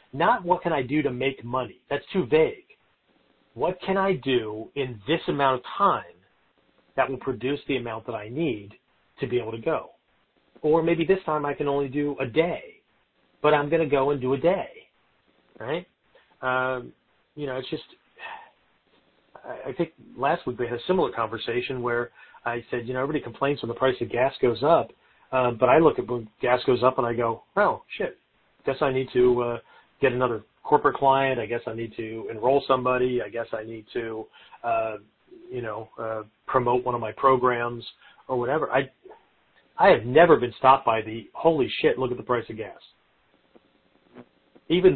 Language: English